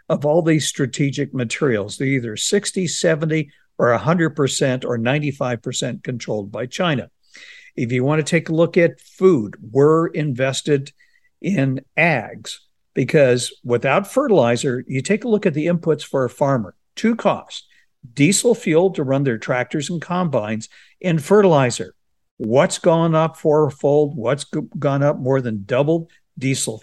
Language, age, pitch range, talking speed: English, 60-79, 125-165 Hz, 145 wpm